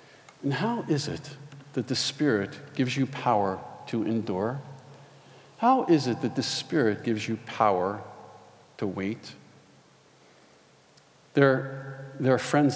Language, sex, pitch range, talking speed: English, male, 110-140 Hz, 125 wpm